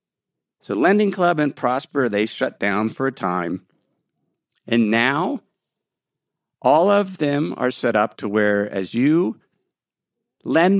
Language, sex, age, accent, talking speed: English, male, 50-69, American, 135 wpm